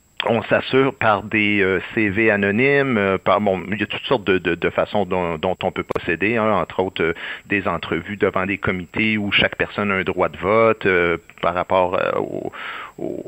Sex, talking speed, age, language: male, 190 wpm, 50-69, French